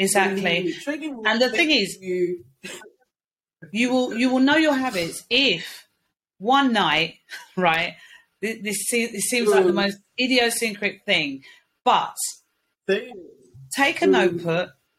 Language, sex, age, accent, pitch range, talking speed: English, female, 40-59, British, 170-250 Hz, 110 wpm